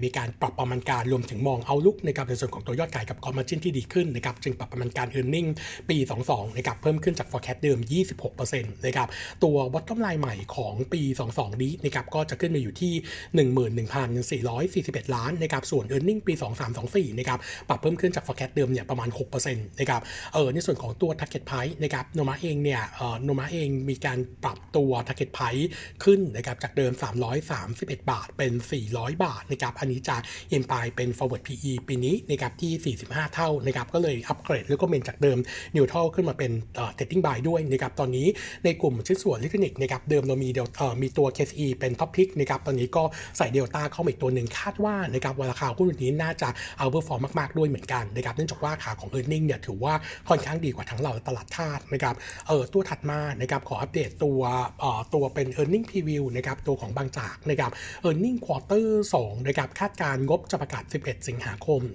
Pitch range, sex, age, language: 125-155 Hz, male, 60-79, Thai